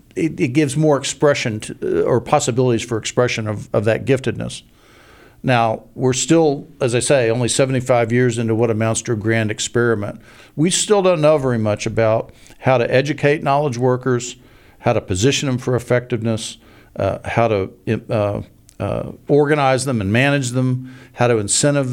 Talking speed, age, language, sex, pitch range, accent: 165 wpm, 50-69, English, male, 110-130 Hz, American